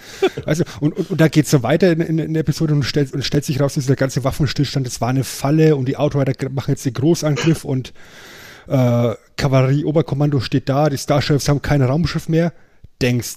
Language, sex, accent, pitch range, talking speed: German, male, German, 125-150 Hz, 205 wpm